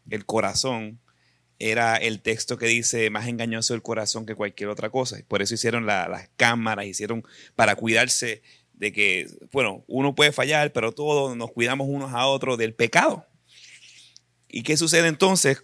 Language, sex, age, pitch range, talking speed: Spanish, male, 30-49, 100-130 Hz, 165 wpm